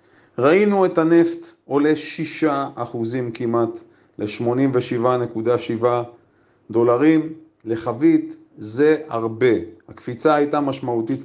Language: Hebrew